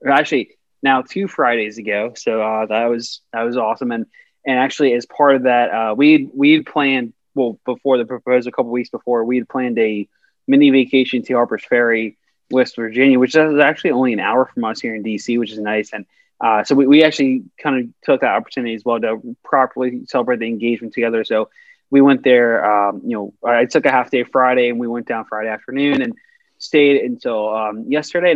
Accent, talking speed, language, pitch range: American, 210 wpm, English, 115-135 Hz